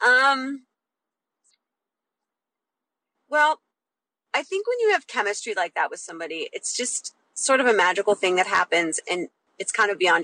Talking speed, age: 150 wpm, 30-49